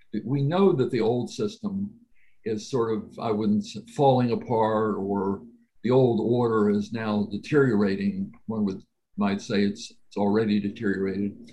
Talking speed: 150 wpm